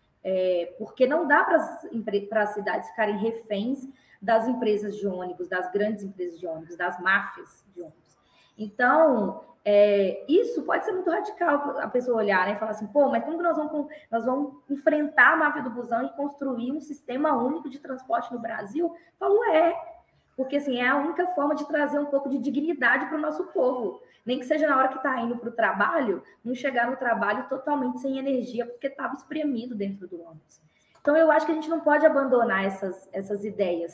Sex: female